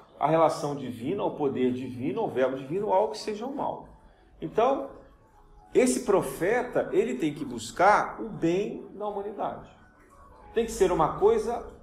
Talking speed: 150 wpm